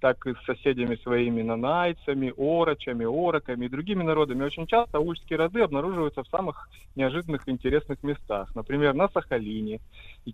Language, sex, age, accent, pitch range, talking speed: Russian, male, 20-39, native, 130-185 Hz, 145 wpm